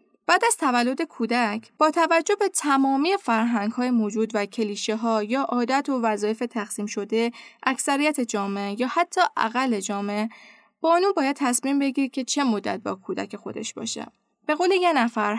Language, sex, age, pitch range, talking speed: Persian, female, 10-29, 220-285 Hz, 165 wpm